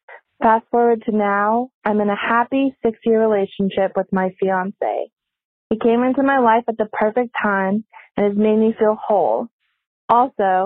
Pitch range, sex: 195-235 Hz, female